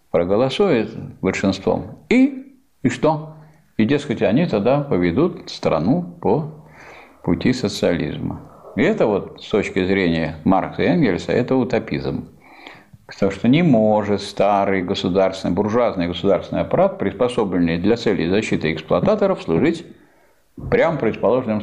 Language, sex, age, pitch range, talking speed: Russian, male, 50-69, 90-115 Hz, 115 wpm